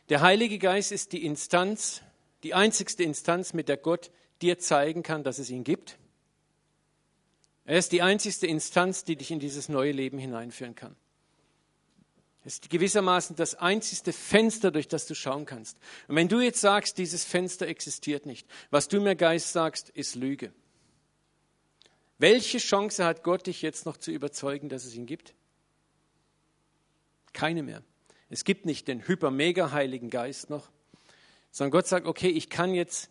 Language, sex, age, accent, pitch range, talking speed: German, male, 50-69, German, 140-180 Hz, 160 wpm